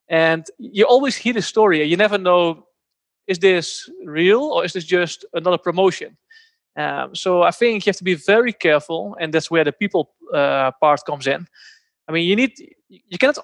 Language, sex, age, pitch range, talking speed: English, male, 20-39, 165-205 Hz, 190 wpm